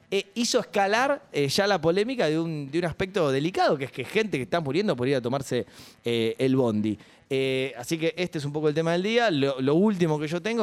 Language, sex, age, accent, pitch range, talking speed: Spanish, male, 20-39, Argentinian, 130-165 Hz, 245 wpm